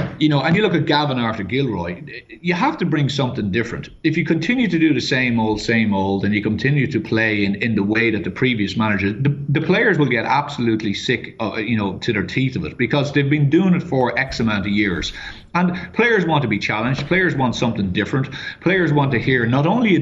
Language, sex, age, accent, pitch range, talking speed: English, male, 30-49, Irish, 115-160 Hz, 240 wpm